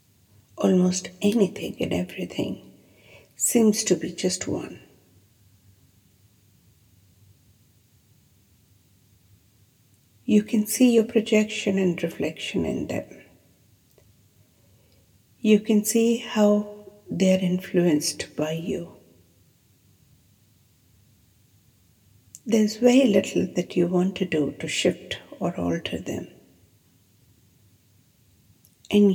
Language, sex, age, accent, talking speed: English, female, 60-79, Indian, 85 wpm